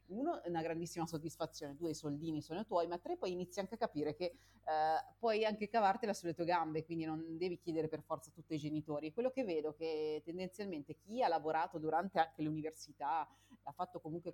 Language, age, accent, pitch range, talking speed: Italian, 30-49, native, 150-180 Hz, 210 wpm